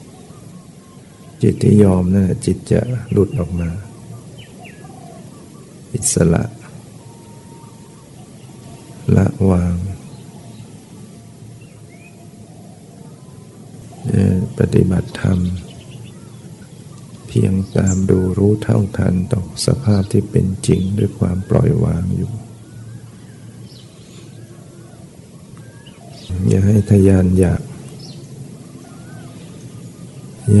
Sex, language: male, Thai